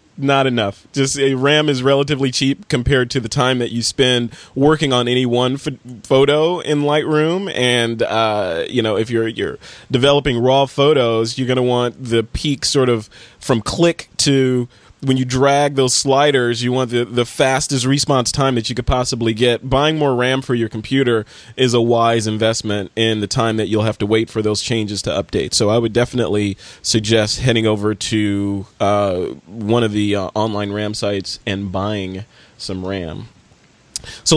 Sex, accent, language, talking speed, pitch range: male, American, English, 185 wpm, 110-135 Hz